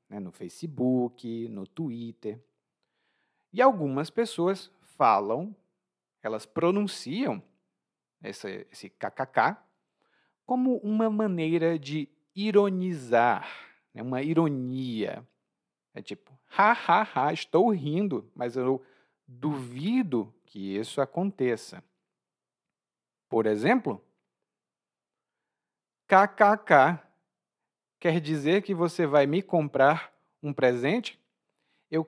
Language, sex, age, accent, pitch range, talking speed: Portuguese, male, 40-59, Brazilian, 130-195 Hz, 90 wpm